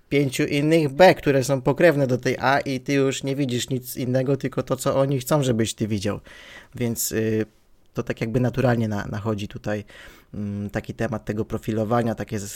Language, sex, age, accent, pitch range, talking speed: Polish, male, 20-39, native, 110-130 Hz, 165 wpm